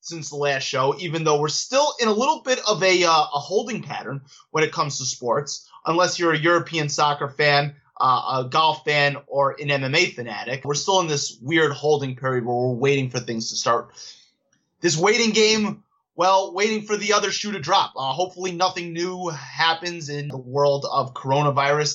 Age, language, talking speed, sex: 20-39, English, 195 wpm, male